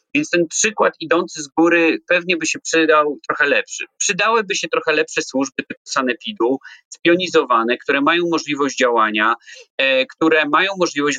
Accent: native